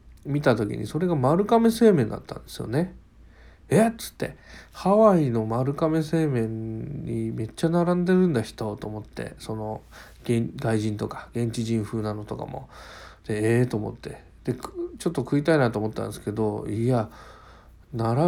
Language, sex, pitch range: Japanese, male, 110-170 Hz